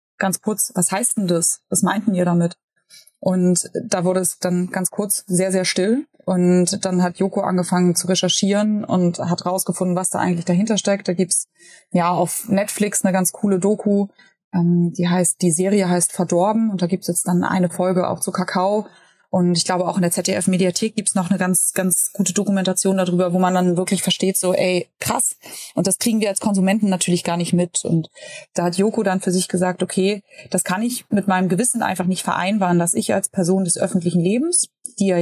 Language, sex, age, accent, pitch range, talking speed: German, female, 20-39, German, 180-205 Hz, 210 wpm